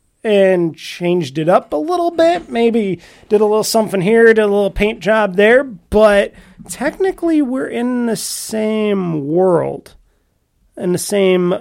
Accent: American